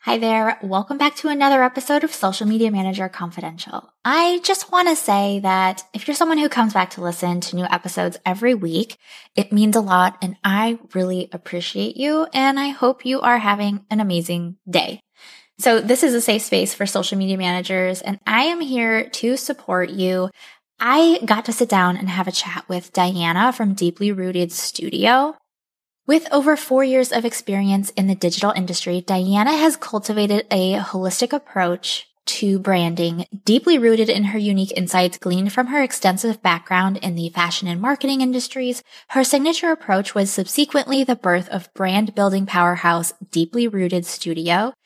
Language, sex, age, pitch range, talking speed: English, female, 10-29, 185-250 Hz, 175 wpm